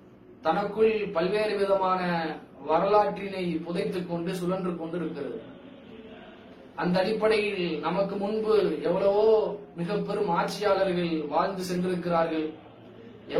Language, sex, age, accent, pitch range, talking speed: English, male, 20-39, Indian, 180-220 Hz, 120 wpm